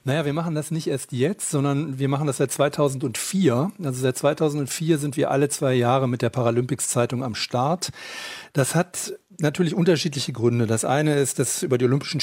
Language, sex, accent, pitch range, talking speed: German, male, German, 120-145 Hz, 185 wpm